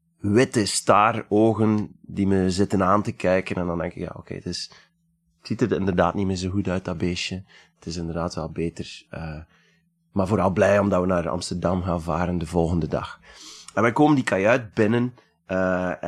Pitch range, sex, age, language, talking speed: 90-110 Hz, male, 30-49, Dutch, 200 wpm